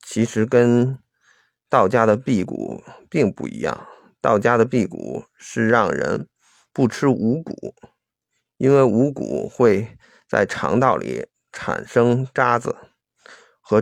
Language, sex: Chinese, male